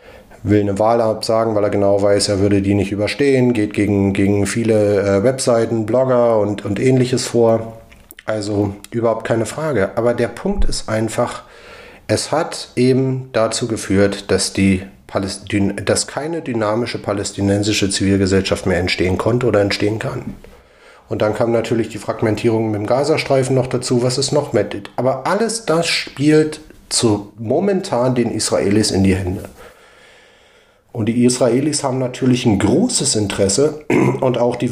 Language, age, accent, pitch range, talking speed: English, 40-59, German, 105-125 Hz, 150 wpm